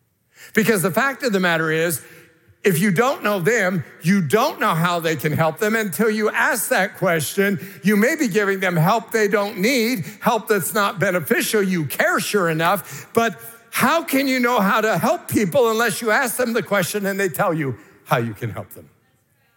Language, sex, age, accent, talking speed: English, male, 50-69, American, 200 wpm